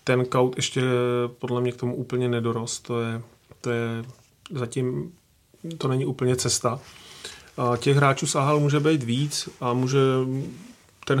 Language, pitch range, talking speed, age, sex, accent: Czech, 125-135 Hz, 150 wpm, 30-49, male, native